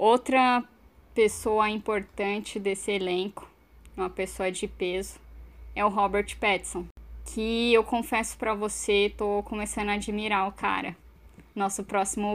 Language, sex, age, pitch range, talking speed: Portuguese, female, 10-29, 190-220 Hz, 125 wpm